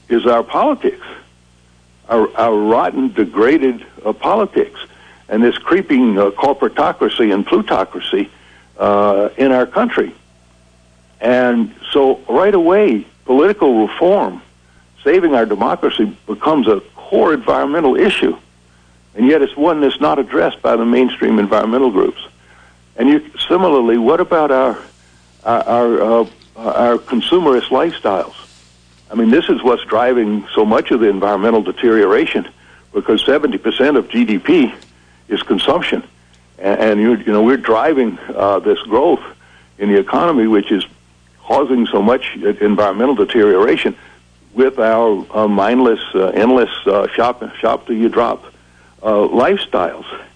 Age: 60-79